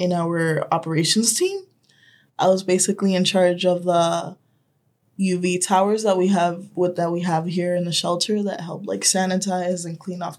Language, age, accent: English, 20-39, American